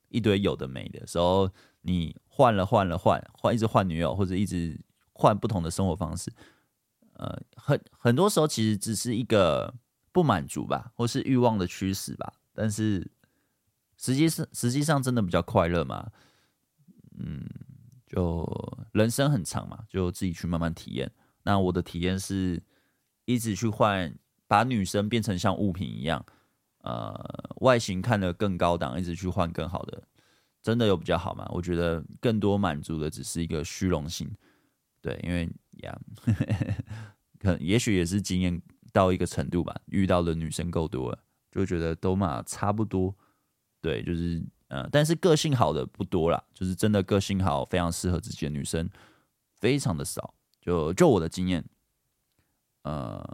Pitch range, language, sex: 85-115 Hz, Chinese, male